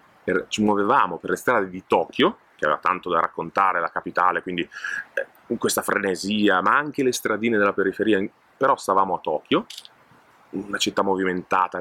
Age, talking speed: 30-49, 150 wpm